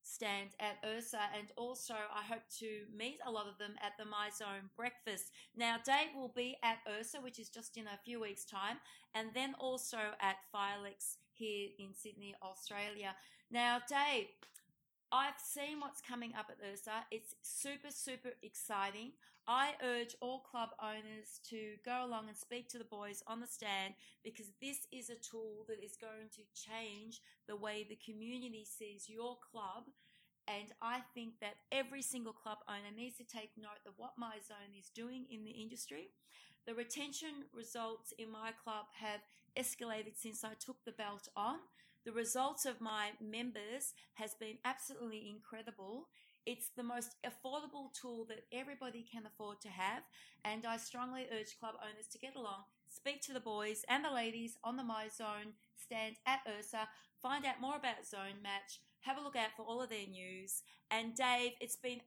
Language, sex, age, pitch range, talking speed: English, female, 30-49, 215-245 Hz, 175 wpm